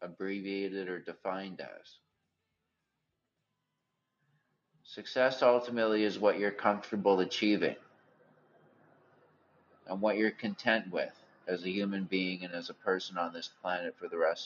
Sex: male